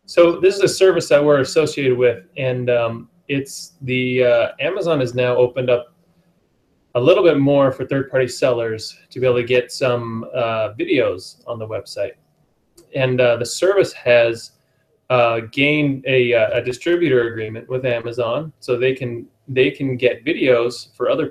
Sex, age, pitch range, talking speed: male, 20-39, 120-140 Hz, 170 wpm